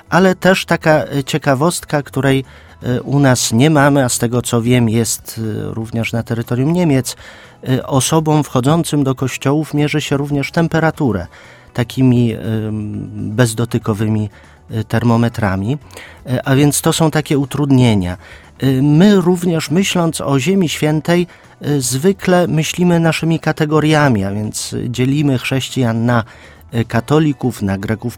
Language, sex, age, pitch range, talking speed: Polish, male, 40-59, 120-155 Hz, 115 wpm